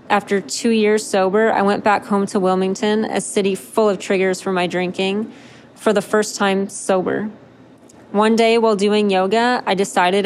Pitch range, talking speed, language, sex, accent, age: 185-210 Hz, 175 wpm, English, female, American, 20-39